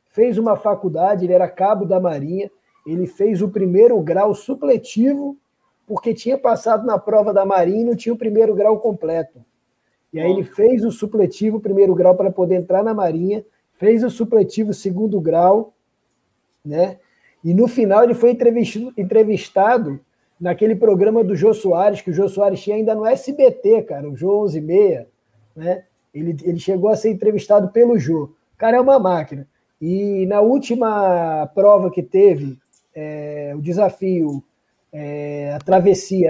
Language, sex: Portuguese, male